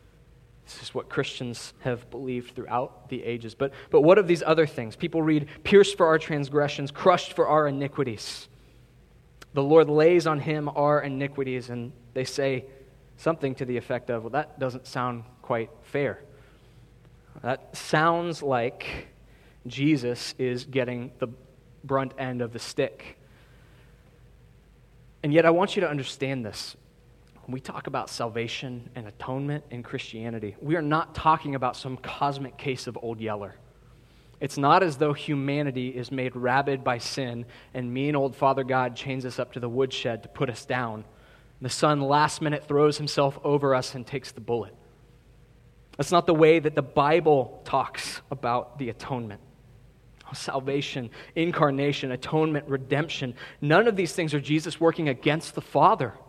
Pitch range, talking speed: 125-150 Hz, 160 wpm